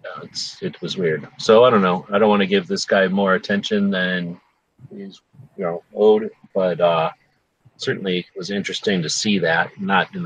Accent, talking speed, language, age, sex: American, 195 wpm, English, 30-49, male